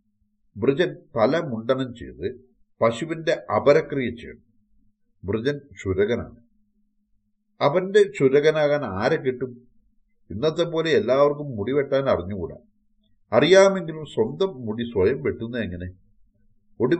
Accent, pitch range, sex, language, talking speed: Indian, 105-150 Hz, male, English, 80 wpm